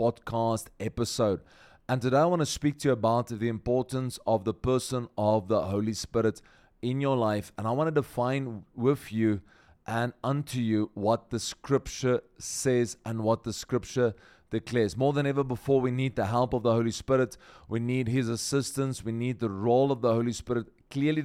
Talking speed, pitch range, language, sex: 190 wpm, 110-130 Hz, English, male